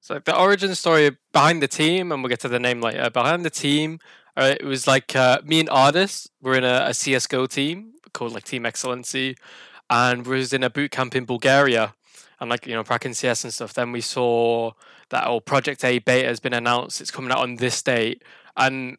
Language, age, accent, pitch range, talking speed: English, 10-29, British, 125-145 Hz, 230 wpm